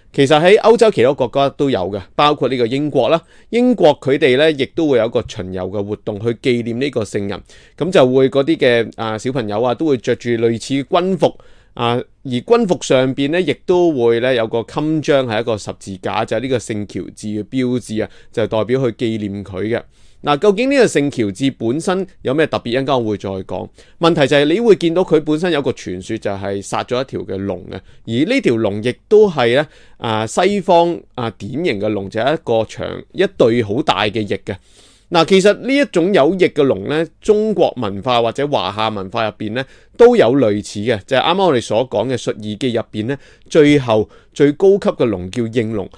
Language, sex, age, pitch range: Chinese, male, 30-49, 110-150 Hz